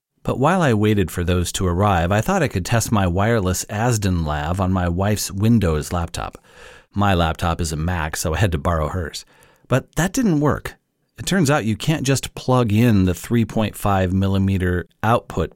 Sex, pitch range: male, 85-115 Hz